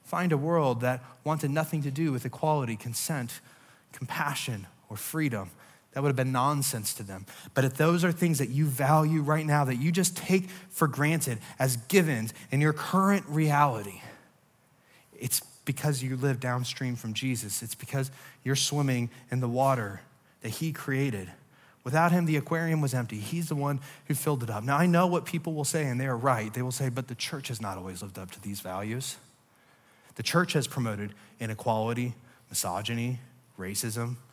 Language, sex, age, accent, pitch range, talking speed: English, male, 20-39, American, 125-185 Hz, 185 wpm